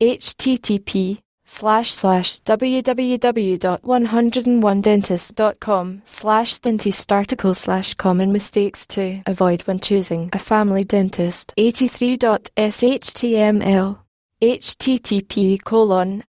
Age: 10-29